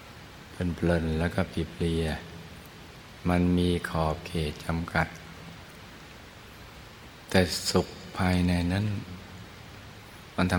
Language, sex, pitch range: Thai, male, 85-90 Hz